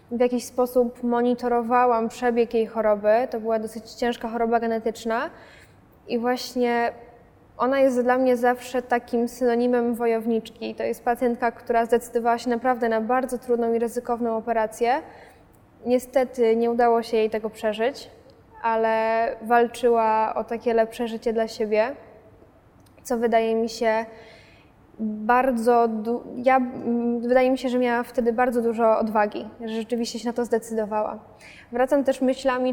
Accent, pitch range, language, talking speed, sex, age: native, 225-245 Hz, Polish, 135 wpm, female, 20-39